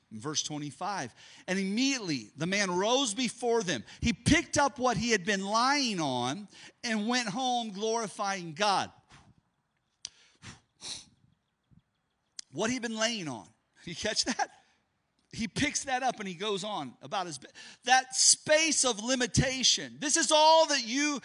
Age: 40-59